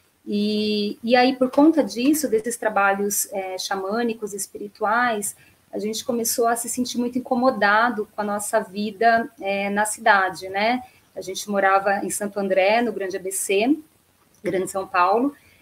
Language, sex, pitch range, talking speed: Portuguese, female, 205-250 Hz, 140 wpm